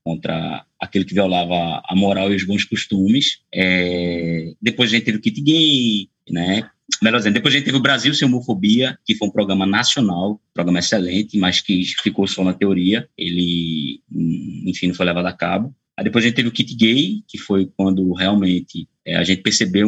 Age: 20-39